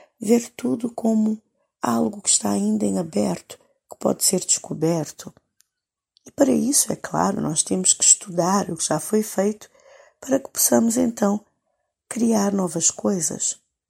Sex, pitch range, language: female, 165-235 Hz, Portuguese